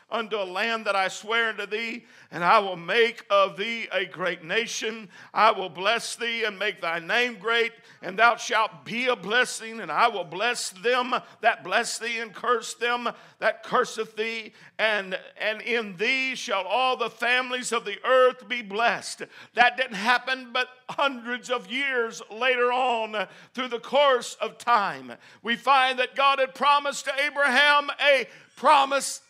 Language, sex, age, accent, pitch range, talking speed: English, male, 60-79, American, 225-285 Hz, 170 wpm